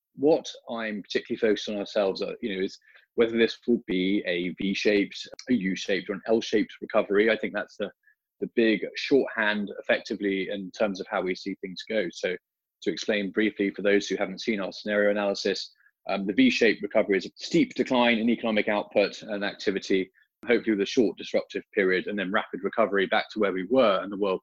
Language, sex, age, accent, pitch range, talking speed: English, male, 20-39, British, 100-125 Hz, 195 wpm